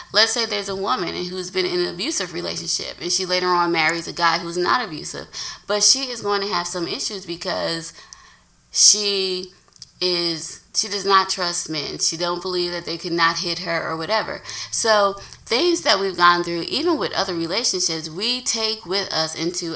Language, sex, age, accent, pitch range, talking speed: English, female, 20-39, American, 165-200 Hz, 190 wpm